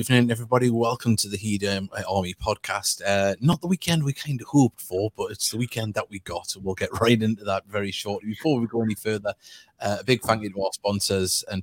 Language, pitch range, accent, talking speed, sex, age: English, 95-115 Hz, British, 245 wpm, male, 30-49